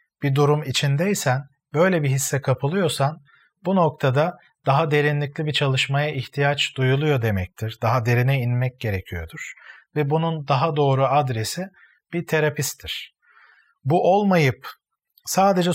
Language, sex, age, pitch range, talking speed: Turkish, male, 40-59, 135-160 Hz, 115 wpm